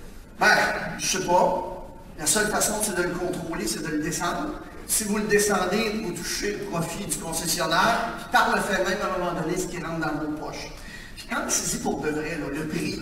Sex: male